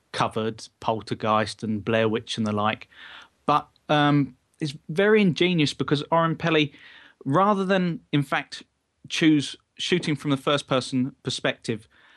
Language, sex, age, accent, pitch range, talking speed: English, male, 30-49, British, 120-145 Hz, 135 wpm